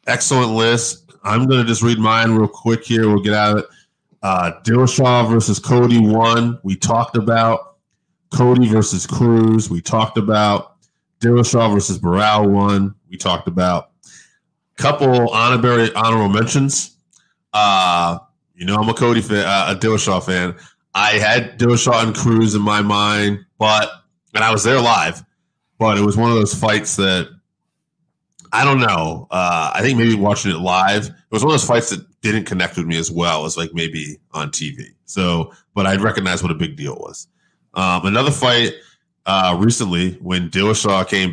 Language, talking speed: English, 170 wpm